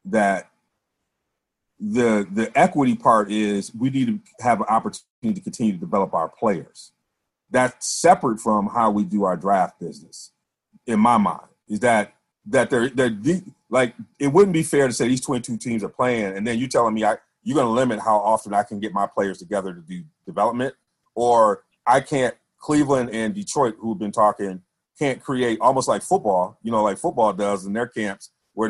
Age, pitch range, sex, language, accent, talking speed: 30-49, 105-130 Hz, male, English, American, 195 wpm